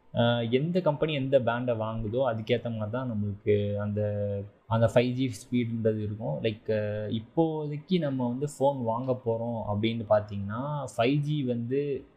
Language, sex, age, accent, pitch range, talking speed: Tamil, male, 20-39, native, 110-125 Hz, 130 wpm